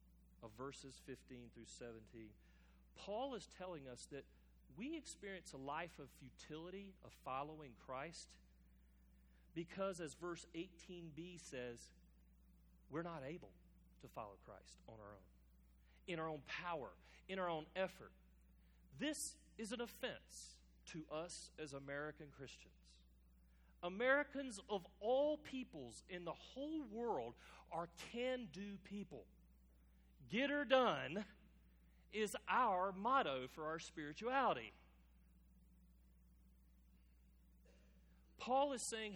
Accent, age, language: American, 40-59, English